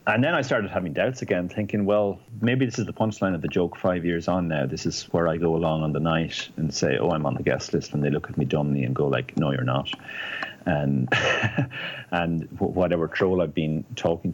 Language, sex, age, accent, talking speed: English, male, 30-49, Irish, 240 wpm